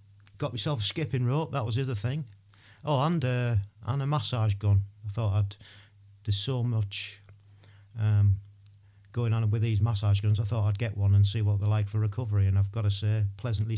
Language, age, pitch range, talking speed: English, 40-59, 100-120 Hz, 205 wpm